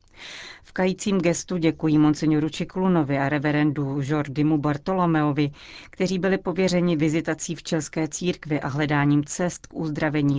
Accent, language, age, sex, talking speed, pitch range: native, Czech, 40-59, female, 125 wpm, 145-165 Hz